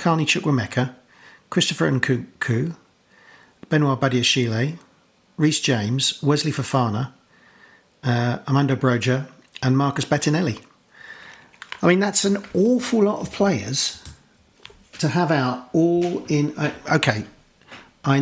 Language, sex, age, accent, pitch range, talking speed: English, male, 50-69, British, 125-165 Hz, 105 wpm